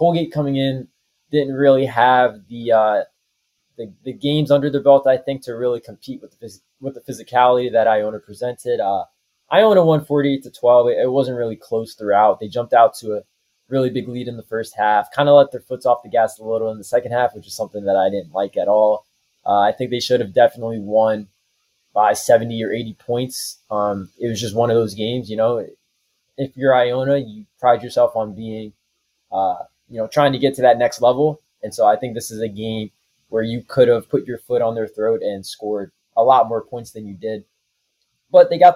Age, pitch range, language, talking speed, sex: 20-39, 110-135 Hz, English, 225 wpm, male